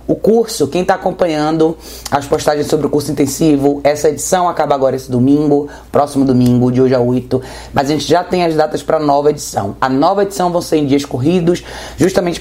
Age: 20-39